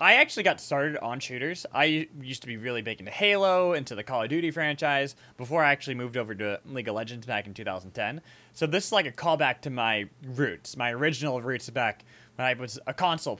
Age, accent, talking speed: 20-39, American, 225 wpm